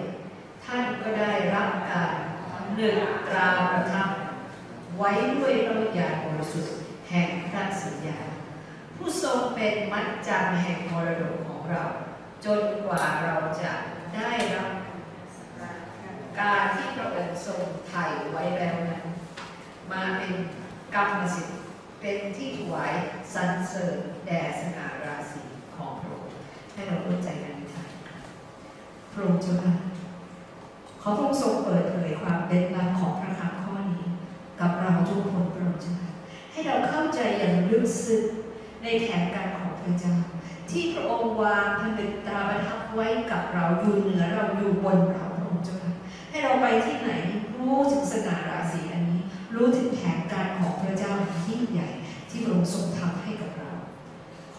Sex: female